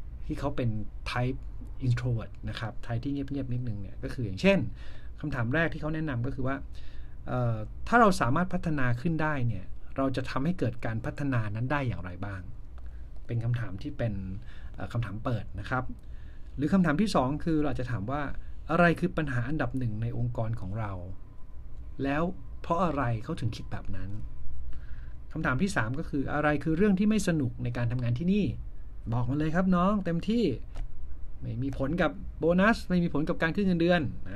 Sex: male